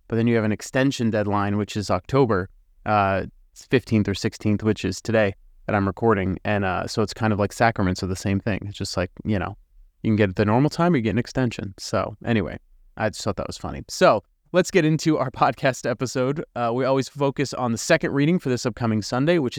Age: 30-49